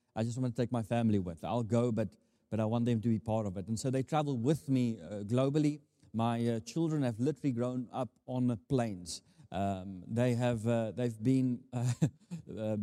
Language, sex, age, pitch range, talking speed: English, male, 30-49, 110-130 Hz, 215 wpm